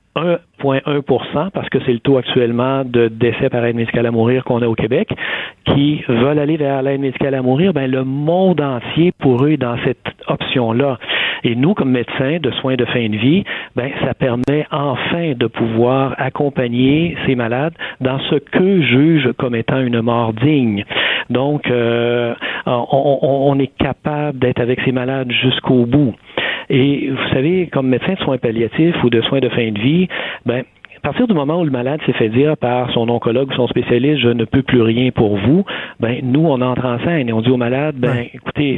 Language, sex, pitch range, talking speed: French, male, 120-145 Hz, 205 wpm